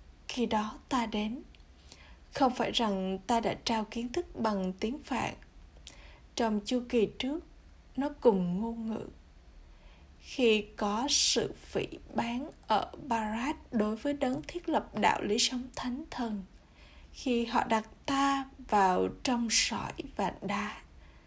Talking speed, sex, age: 140 wpm, female, 20-39